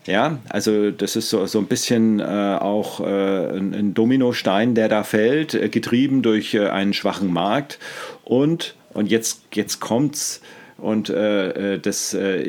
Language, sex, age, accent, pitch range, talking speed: German, male, 40-59, German, 95-110 Hz, 155 wpm